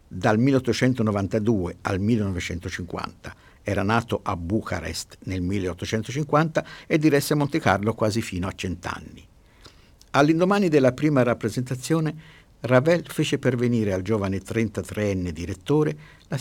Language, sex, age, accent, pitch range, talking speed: Italian, male, 50-69, native, 95-130 Hz, 110 wpm